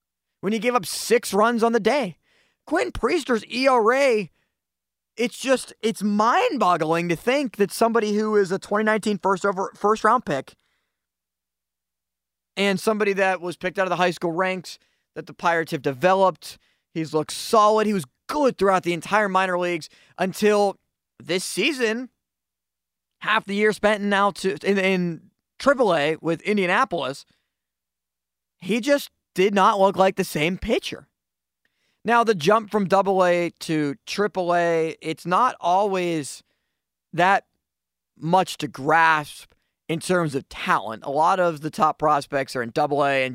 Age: 20-39